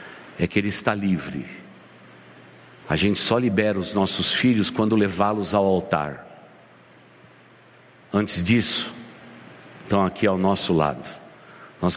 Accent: Brazilian